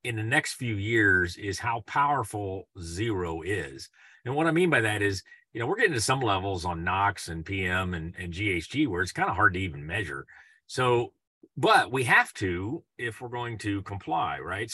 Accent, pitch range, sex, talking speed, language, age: American, 90-115 Hz, male, 205 wpm, English, 40-59